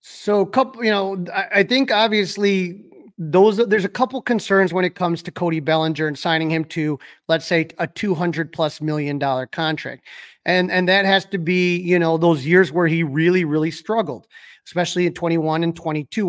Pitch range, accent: 160-195 Hz, American